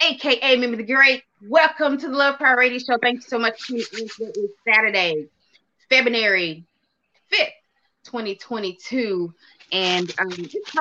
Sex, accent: female, American